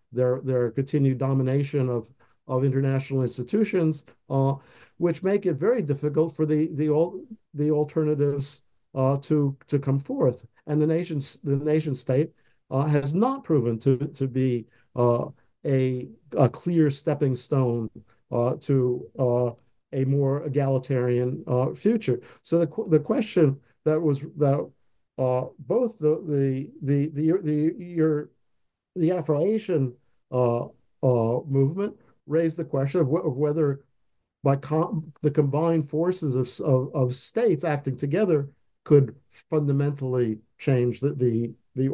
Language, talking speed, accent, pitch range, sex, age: English, 140 wpm, American, 130-155 Hz, male, 50-69